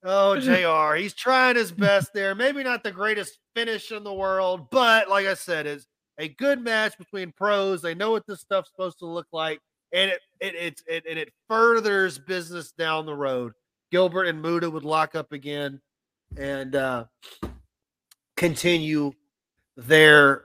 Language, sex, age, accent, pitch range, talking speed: English, male, 30-49, American, 155-220 Hz, 165 wpm